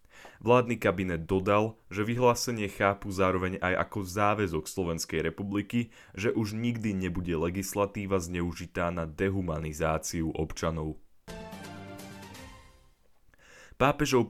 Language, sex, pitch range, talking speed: Slovak, male, 85-110 Hz, 90 wpm